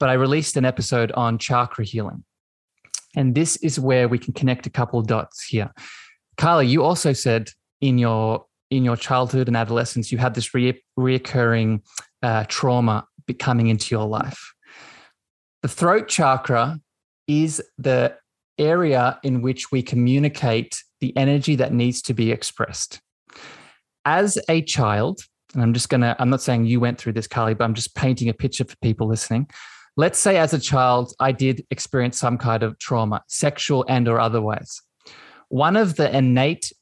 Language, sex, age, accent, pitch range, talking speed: English, male, 20-39, Australian, 120-140 Hz, 170 wpm